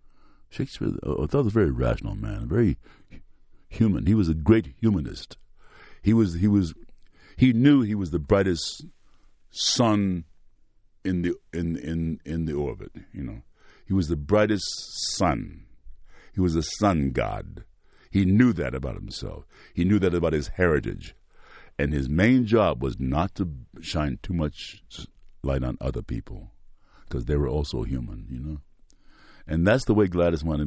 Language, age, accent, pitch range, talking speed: English, 60-79, American, 75-100 Hz, 160 wpm